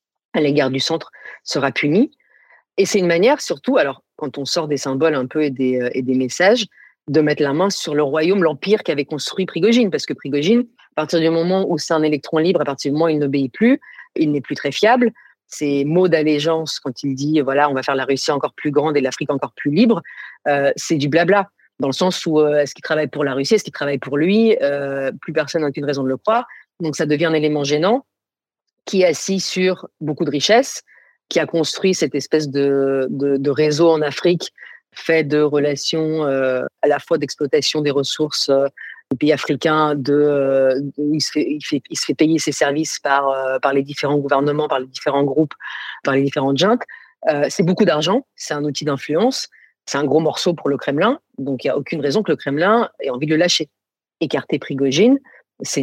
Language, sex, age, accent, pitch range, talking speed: French, female, 40-59, French, 140-170 Hz, 220 wpm